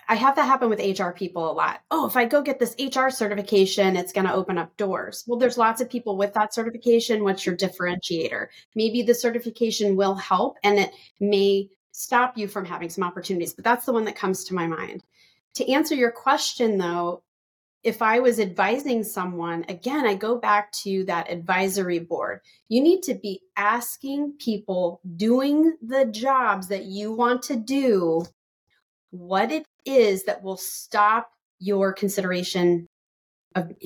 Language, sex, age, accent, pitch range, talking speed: English, female, 30-49, American, 190-240 Hz, 170 wpm